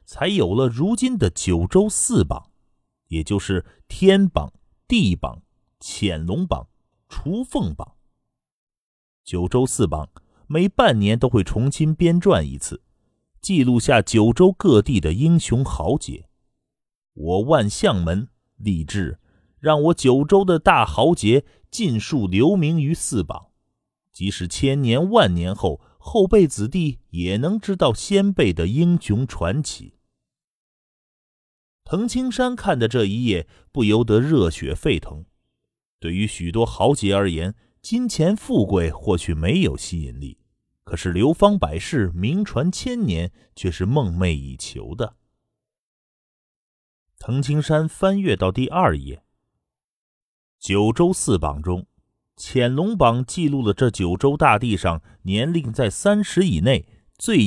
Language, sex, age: Chinese, male, 30-49